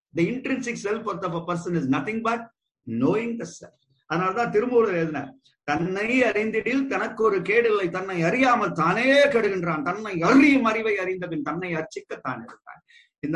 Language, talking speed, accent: English, 145 wpm, Indian